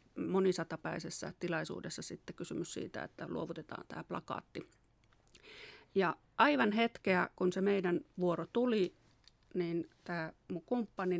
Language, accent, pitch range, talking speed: Finnish, native, 175-205 Hz, 105 wpm